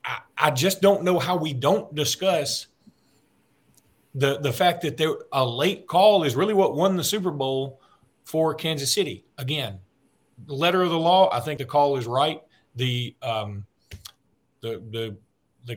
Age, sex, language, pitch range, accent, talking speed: 40-59, male, English, 120-160 Hz, American, 165 wpm